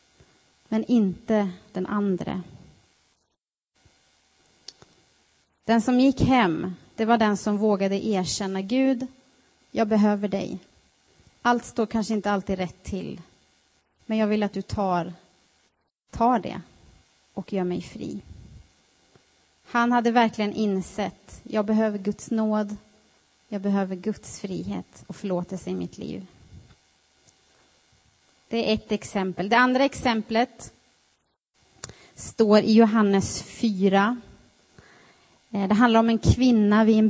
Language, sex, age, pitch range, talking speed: Swedish, female, 30-49, 180-220 Hz, 115 wpm